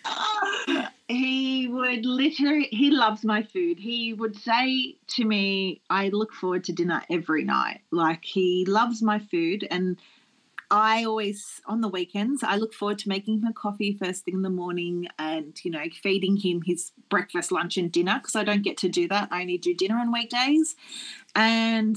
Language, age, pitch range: English, 30-49, 185-245 Hz